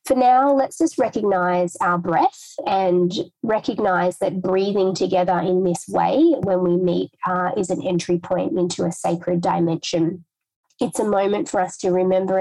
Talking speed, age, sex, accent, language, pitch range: 165 wpm, 20-39, female, Australian, English, 180-250 Hz